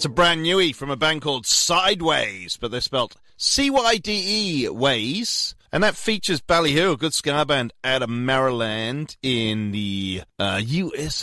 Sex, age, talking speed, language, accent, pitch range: male, 30-49, 155 wpm, English, British, 105-175 Hz